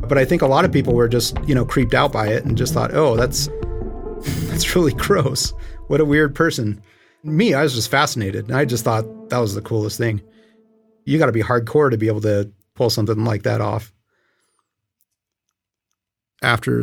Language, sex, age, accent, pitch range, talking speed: English, male, 30-49, American, 110-135 Hz, 200 wpm